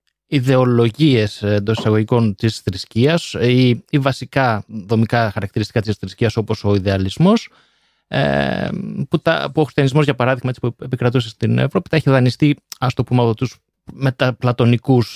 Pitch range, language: 105-145 Hz, Greek